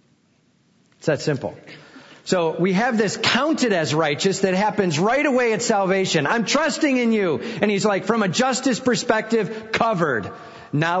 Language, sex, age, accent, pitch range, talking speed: English, male, 40-59, American, 160-225 Hz, 160 wpm